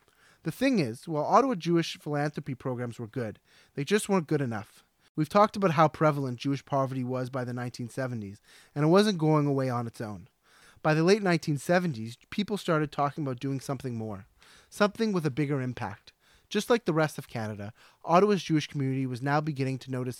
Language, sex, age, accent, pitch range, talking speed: English, male, 30-49, American, 125-165 Hz, 190 wpm